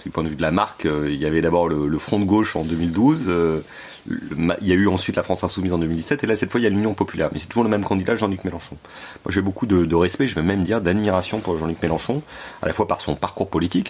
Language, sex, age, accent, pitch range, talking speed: French, male, 30-49, French, 85-110 Hz, 300 wpm